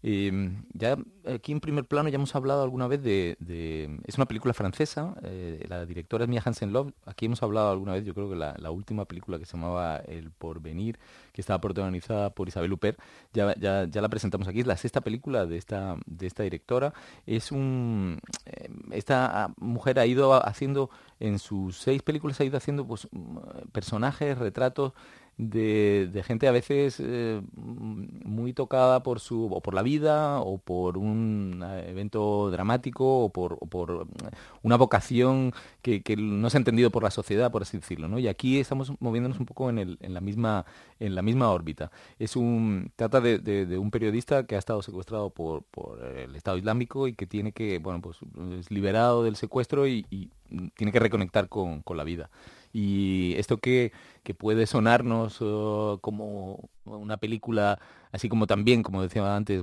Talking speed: 185 wpm